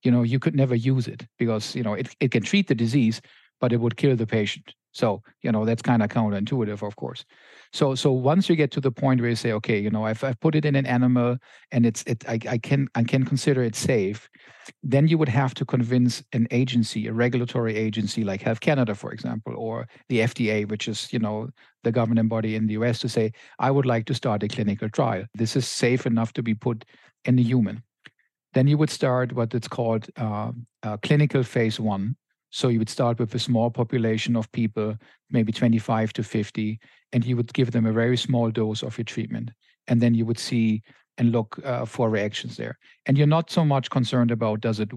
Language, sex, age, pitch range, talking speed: English, male, 50-69, 110-130 Hz, 225 wpm